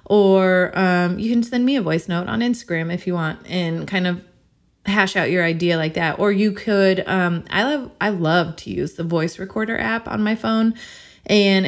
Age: 20-39